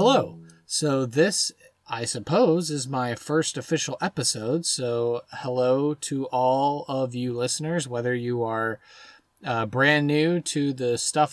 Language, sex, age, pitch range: English, male, 20-39, 125-160 Hz